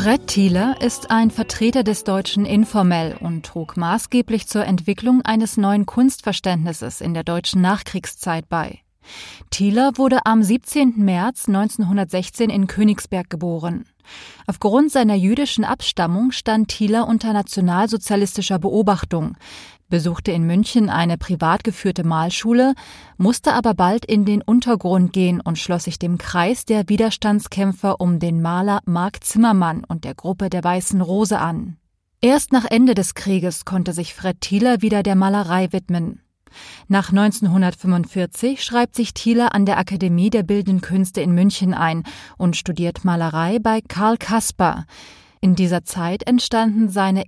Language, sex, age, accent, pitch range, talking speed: German, female, 20-39, German, 180-225 Hz, 140 wpm